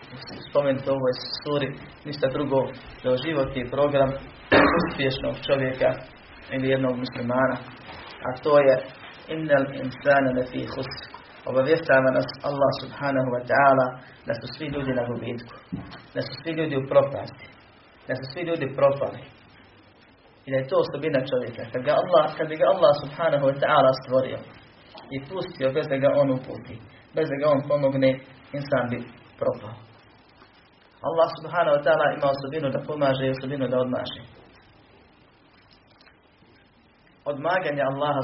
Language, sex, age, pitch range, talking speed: Croatian, male, 30-49, 125-140 Hz, 120 wpm